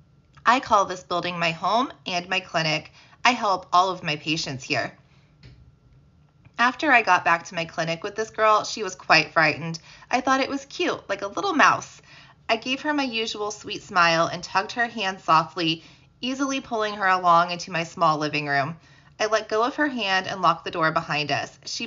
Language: English